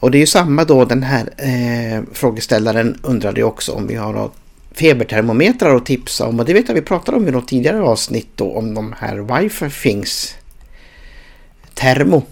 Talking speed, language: 185 wpm, Swedish